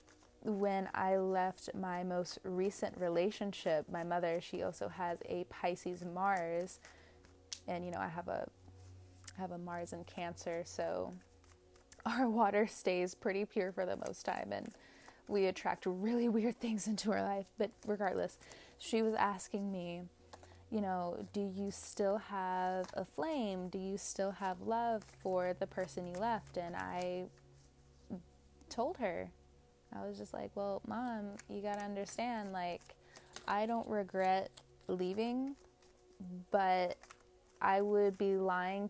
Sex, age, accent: female, 20-39, American